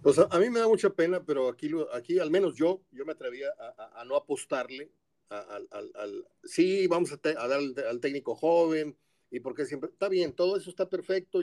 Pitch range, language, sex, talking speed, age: 150-195 Hz, Spanish, male, 220 wpm, 40-59